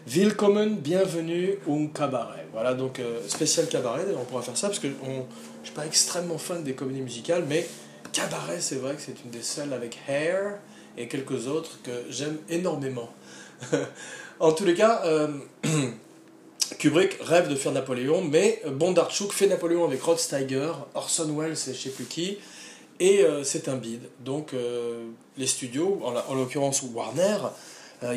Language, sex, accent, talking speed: French, male, French, 175 wpm